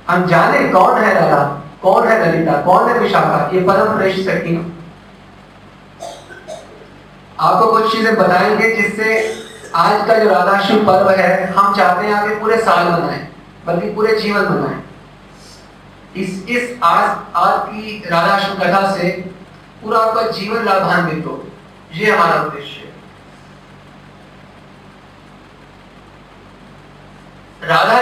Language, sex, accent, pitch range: Hindi, male, native, 170-205 Hz